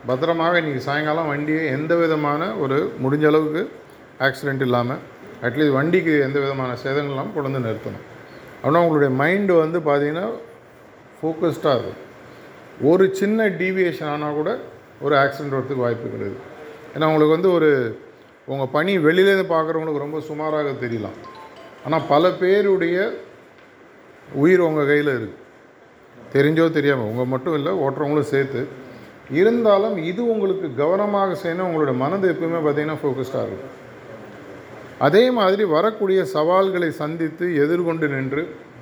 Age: 50-69